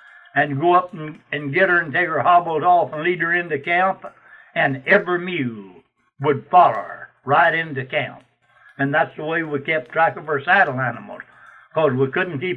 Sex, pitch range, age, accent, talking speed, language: male, 140-190 Hz, 60-79, American, 195 wpm, English